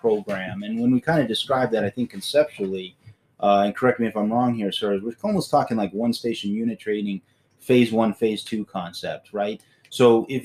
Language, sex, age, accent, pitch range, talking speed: English, male, 30-49, American, 100-125 Hz, 205 wpm